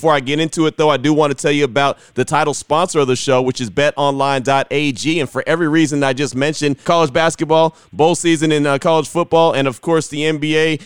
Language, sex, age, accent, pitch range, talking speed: English, male, 30-49, American, 125-150 Hz, 230 wpm